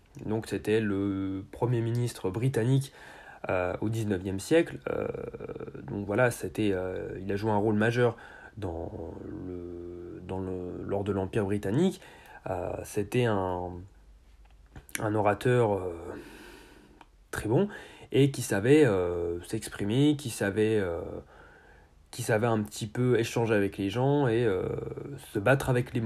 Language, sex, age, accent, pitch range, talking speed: French, male, 30-49, French, 100-130 Hz, 140 wpm